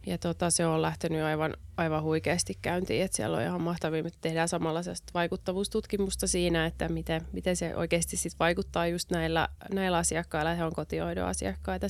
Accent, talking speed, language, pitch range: native, 165 wpm, Finnish, 155-180 Hz